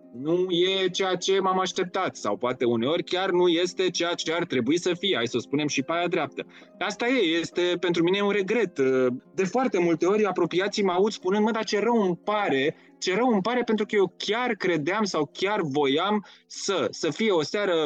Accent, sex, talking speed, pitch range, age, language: native, male, 215 wpm, 140-185 Hz, 20-39, Romanian